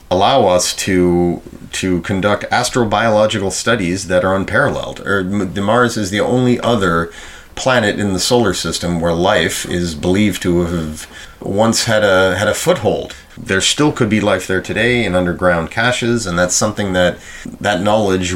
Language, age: English, 30-49